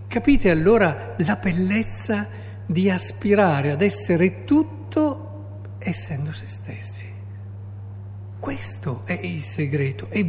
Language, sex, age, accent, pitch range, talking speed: Italian, male, 50-69, native, 100-165 Hz, 100 wpm